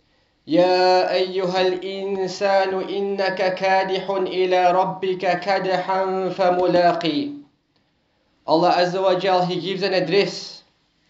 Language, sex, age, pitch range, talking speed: English, male, 40-59, 170-195 Hz, 85 wpm